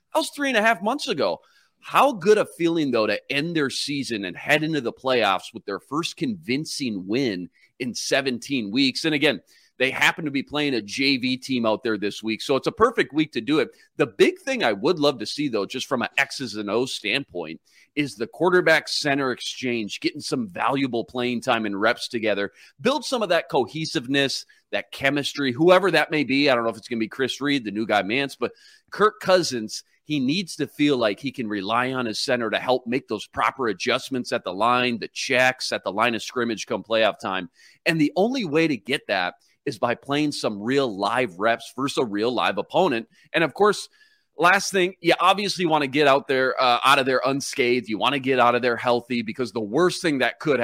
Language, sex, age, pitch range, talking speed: English, male, 30-49, 120-165 Hz, 225 wpm